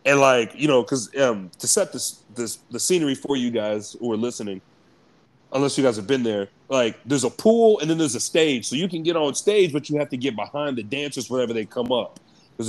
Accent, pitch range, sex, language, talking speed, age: American, 120-155 Hz, male, English, 245 wpm, 30-49